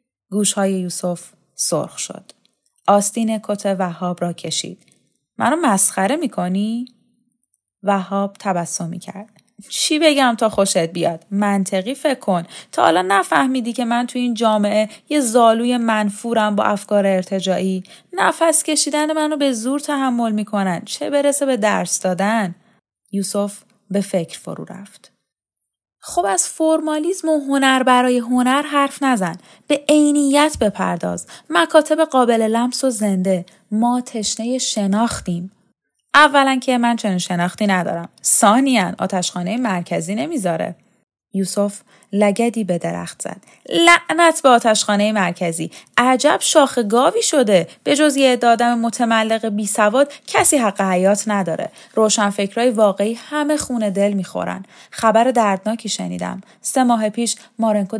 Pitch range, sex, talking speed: 195-255 Hz, female, 125 wpm